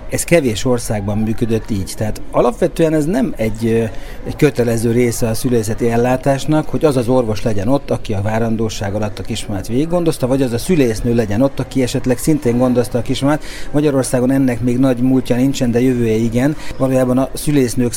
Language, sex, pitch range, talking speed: Hungarian, male, 115-140 Hz, 175 wpm